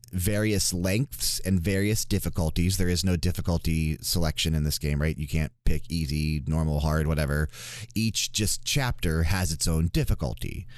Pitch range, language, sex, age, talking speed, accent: 85-115 Hz, English, male, 30-49, 155 wpm, American